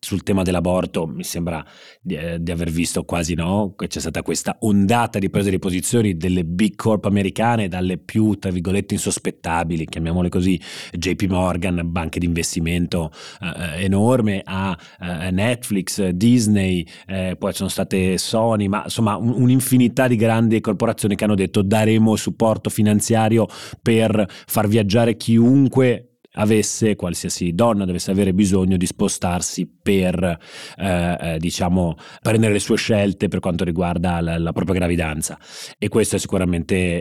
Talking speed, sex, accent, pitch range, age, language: 140 wpm, male, native, 90-110 Hz, 30-49, Italian